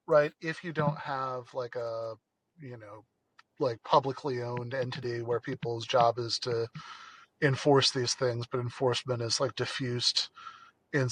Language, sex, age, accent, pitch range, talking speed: English, male, 30-49, American, 120-135 Hz, 145 wpm